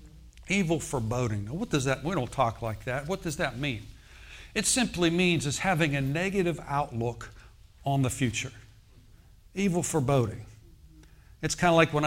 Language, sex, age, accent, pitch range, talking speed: English, male, 60-79, American, 120-160 Hz, 160 wpm